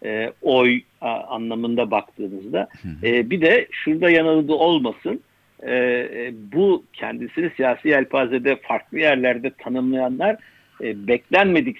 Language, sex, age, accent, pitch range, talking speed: Turkish, male, 60-79, native, 120-150 Hz, 105 wpm